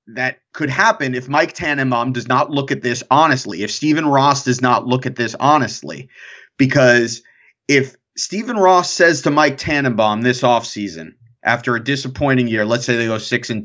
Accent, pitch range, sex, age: American, 115-145 Hz, male, 30-49